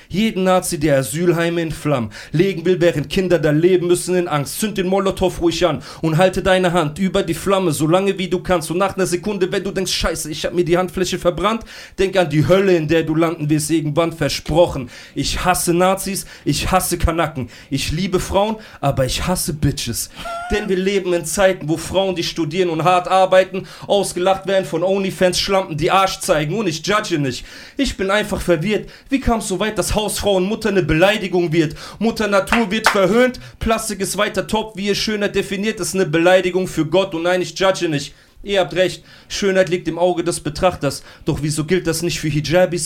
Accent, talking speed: German, 205 wpm